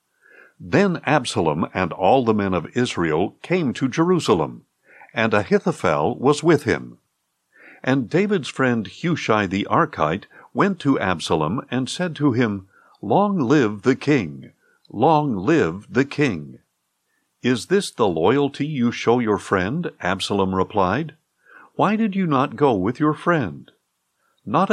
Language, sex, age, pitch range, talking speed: English, male, 60-79, 105-160 Hz, 135 wpm